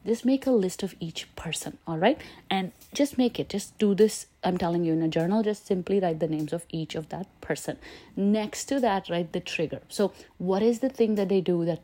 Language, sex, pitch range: English, female, 160-200 Hz